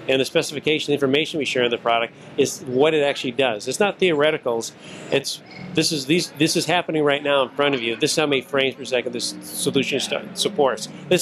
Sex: male